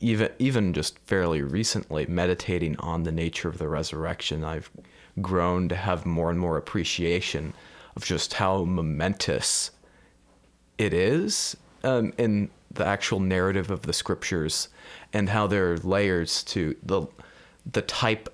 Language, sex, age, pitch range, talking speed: English, male, 30-49, 80-100 Hz, 140 wpm